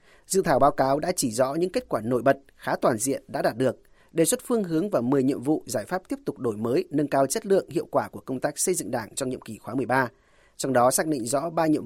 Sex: male